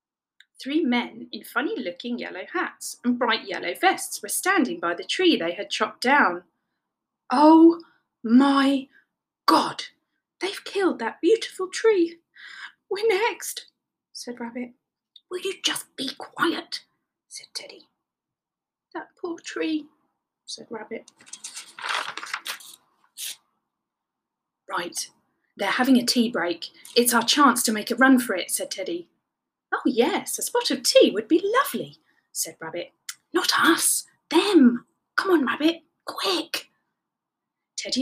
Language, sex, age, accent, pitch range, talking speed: English, female, 30-49, British, 245-370 Hz, 125 wpm